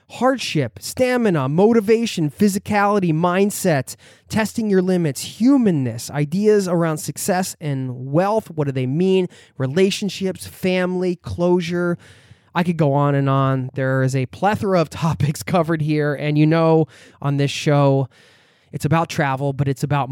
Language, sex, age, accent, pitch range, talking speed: English, male, 20-39, American, 120-165 Hz, 140 wpm